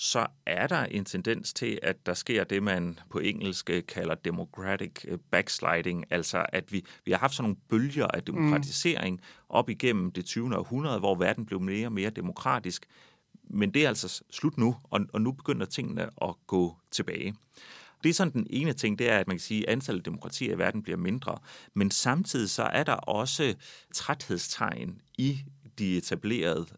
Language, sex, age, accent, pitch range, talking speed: Danish, male, 30-49, native, 95-130 Hz, 185 wpm